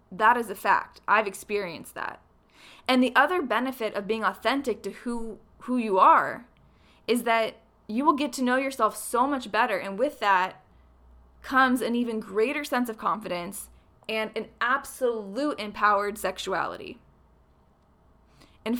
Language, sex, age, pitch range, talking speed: English, female, 20-39, 195-255 Hz, 145 wpm